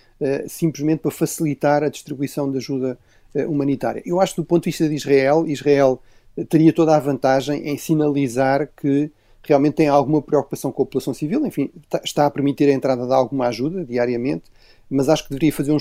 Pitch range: 140-155 Hz